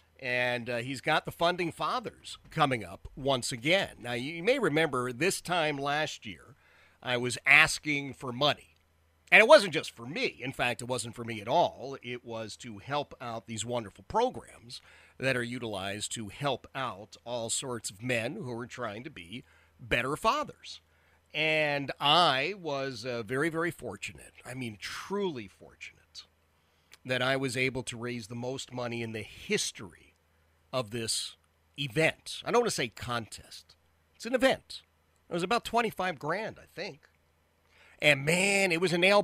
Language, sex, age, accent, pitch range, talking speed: English, male, 40-59, American, 95-155 Hz, 170 wpm